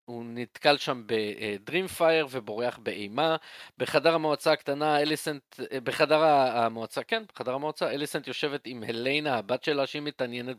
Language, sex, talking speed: Hebrew, male, 130 wpm